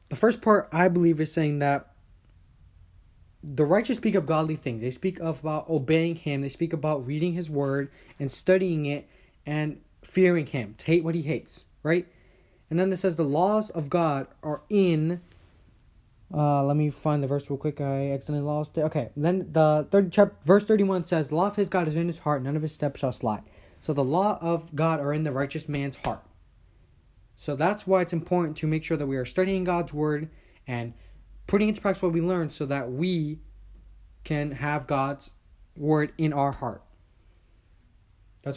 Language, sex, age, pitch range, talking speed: English, male, 20-39, 135-170 Hz, 195 wpm